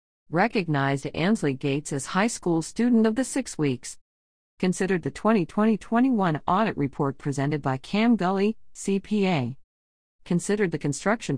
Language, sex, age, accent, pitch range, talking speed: English, female, 50-69, American, 140-190 Hz, 125 wpm